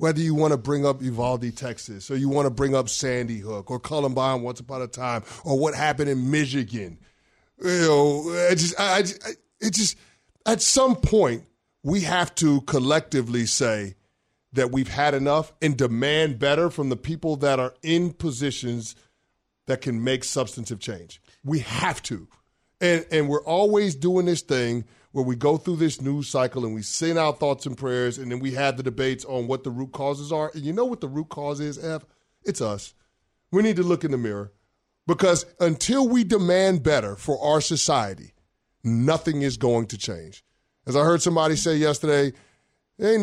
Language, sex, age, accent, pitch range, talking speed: English, male, 30-49, American, 120-155 Hz, 185 wpm